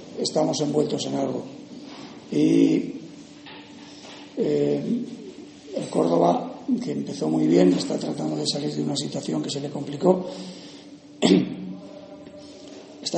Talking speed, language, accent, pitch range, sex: 110 wpm, Spanish, Spanish, 140-170 Hz, male